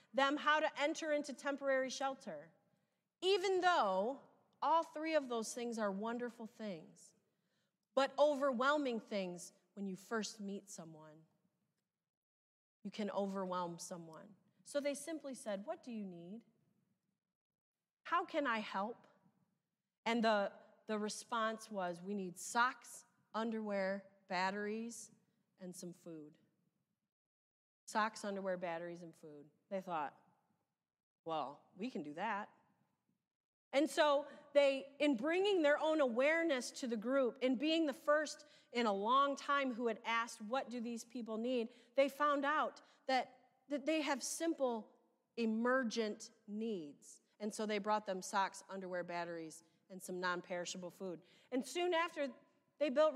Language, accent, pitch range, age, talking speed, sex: English, American, 195-275 Hz, 30-49, 135 wpm, female